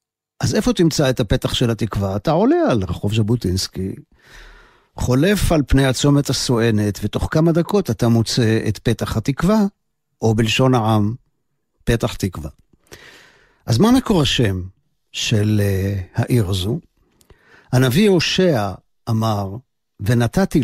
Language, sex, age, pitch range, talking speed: Hebrew, male, 50-69, 105-150 Hz, 120 wpm